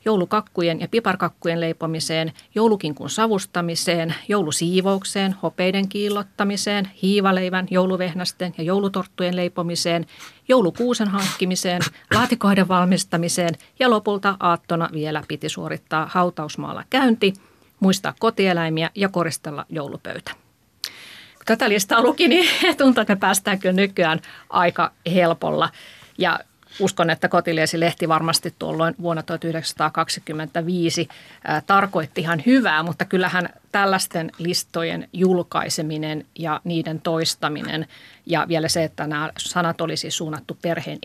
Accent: native